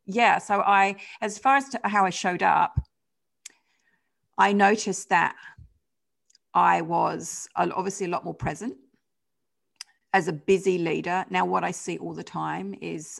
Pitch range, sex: 155-195 Hz, female